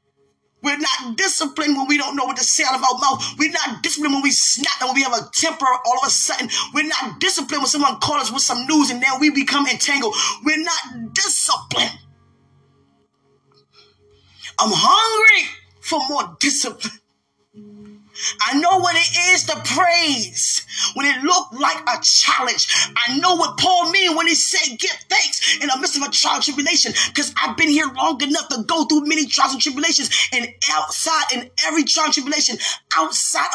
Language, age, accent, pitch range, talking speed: English, 20-39, American, 270-330 Hz, 185 wpm